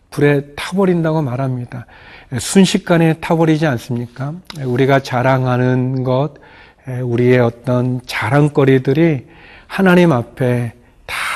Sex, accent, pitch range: male, native, 120-155 Hz